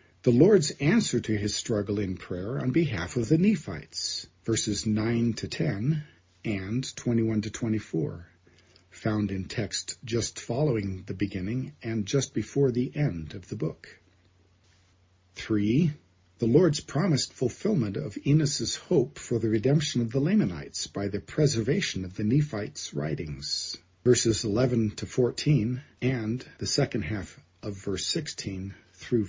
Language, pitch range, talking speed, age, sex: English, 95-135 Hz, 140 wpm, 40-59, male